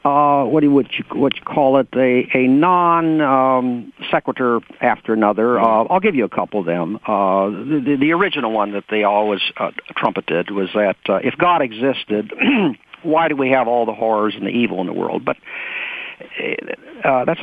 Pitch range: 115-155 Hz